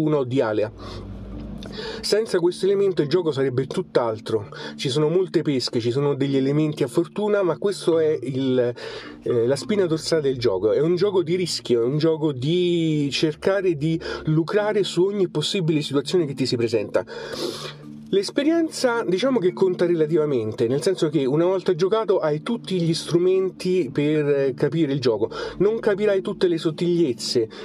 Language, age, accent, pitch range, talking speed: Italian, 30-49, native, 135-180 Hz, 160 wpm